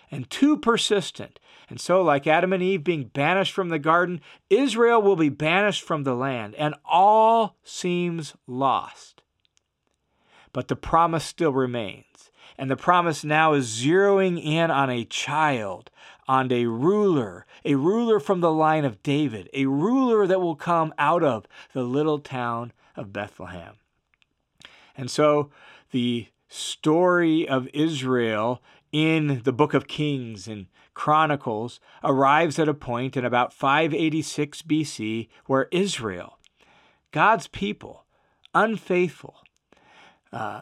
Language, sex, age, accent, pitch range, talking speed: English, male, 40-59, American, 130-180 Hz, 130 wpm